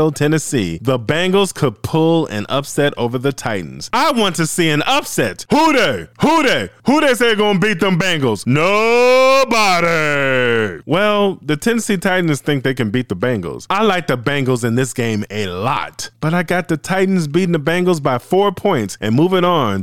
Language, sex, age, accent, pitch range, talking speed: English, male, 20-39, American, 115-165 Hz, 185 wpm